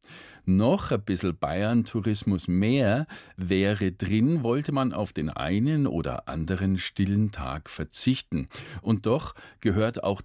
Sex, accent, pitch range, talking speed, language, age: male, German, 95-130 Hz, 125 wpm, German, 50-69